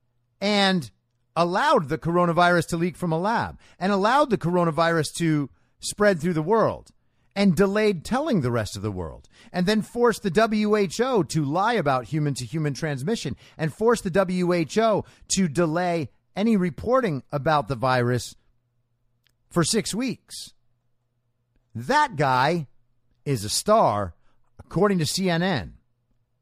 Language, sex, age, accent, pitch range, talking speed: English, male, 40-59, American, 120-195 Hz, 130 wpm